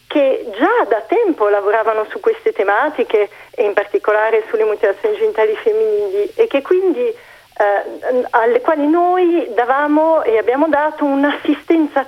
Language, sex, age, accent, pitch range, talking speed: Italian, female, 40-59, native, 230-370 Hz, 135 wpm